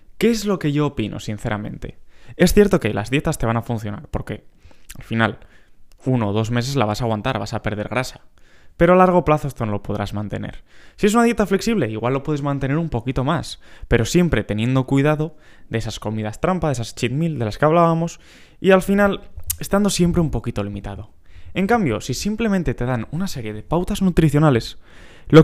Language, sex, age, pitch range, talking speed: Spanish, male, 20-39, 115-170 Hz, 210 wpm